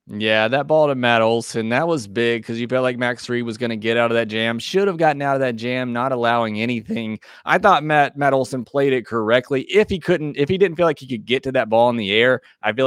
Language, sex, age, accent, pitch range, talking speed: English, male, 20-39, American, 110-130 Hz, 280 wpm